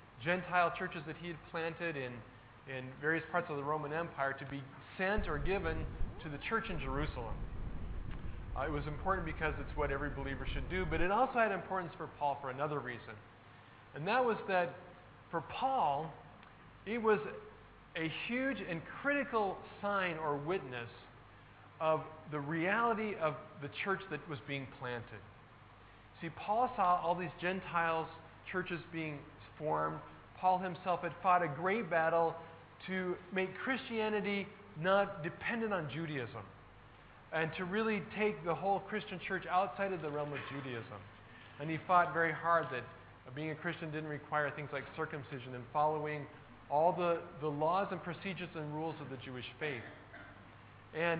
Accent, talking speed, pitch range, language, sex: American, 160 wpm, 135-180 Hz, English, male